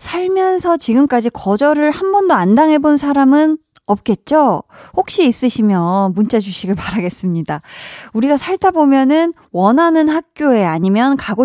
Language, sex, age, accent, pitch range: Korean, female, 20-39, native, 195-285 Hz